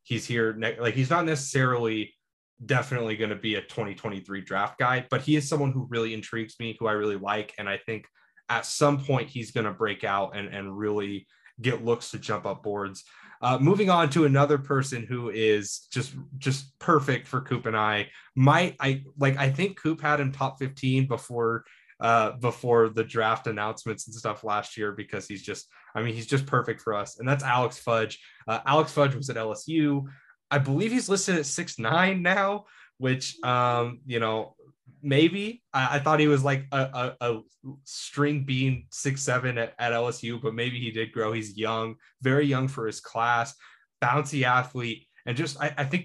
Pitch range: 110-140 Hz